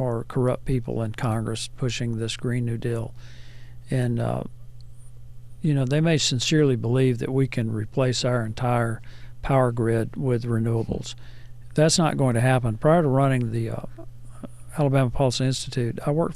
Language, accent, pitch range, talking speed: English, American, 120-150 Hz, 155 wpm